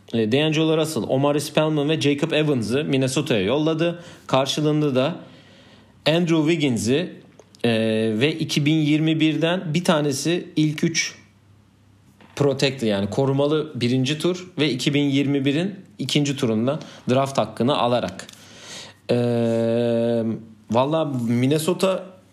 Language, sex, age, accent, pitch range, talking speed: Turkish, male, 40-59, native, 110-150 Hz, 90 wpm